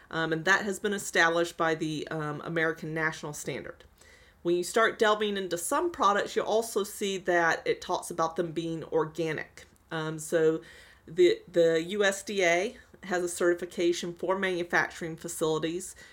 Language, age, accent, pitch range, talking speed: English, 30-49, American, 160-185 Hz, 150 wpm